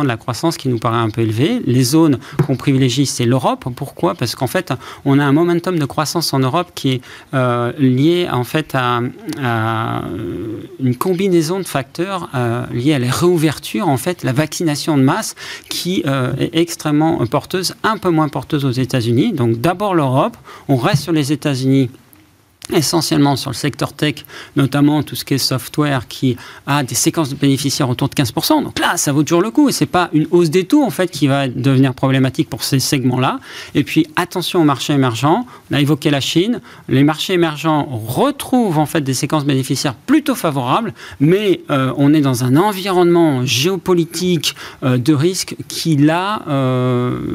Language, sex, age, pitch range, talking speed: French, male, 40-59, 130-165 Hz, 190 wpm